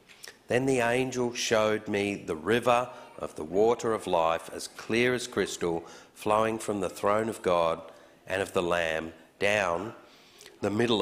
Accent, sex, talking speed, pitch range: Australian, male, 160 wpm, 90-115 Hz